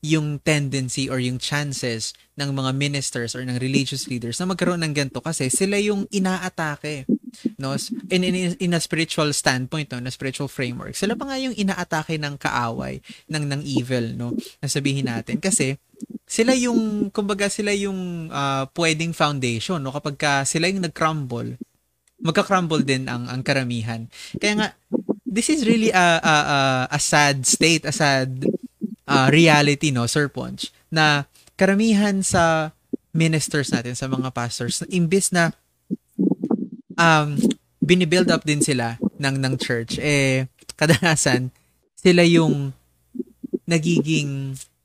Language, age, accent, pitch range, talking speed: Filipino, 20-39, native, 130-180 Hz, 140 wpm